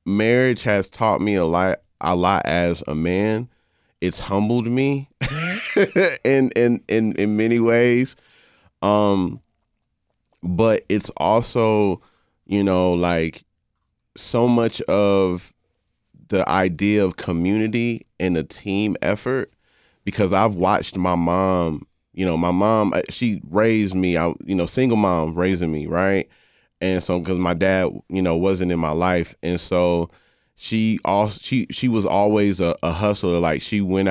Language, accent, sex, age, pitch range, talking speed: English, American, male, 30-49, 90-110 Hz, 145 wpm